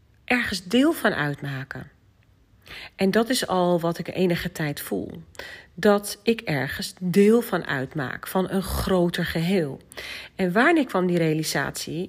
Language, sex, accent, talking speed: Dutch, female, Dutch, 140 wpm